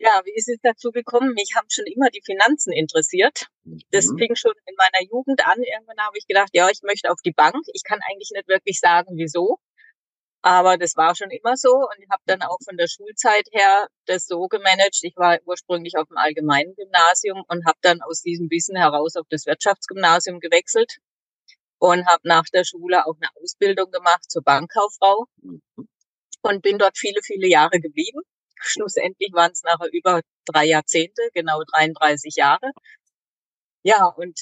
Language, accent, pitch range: German, German, 170-225 Hz